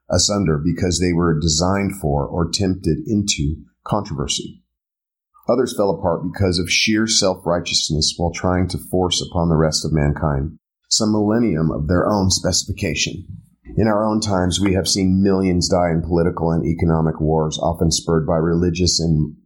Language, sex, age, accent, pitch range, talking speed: English, male, 40-59, American, 80-95 Hz, 155 wpm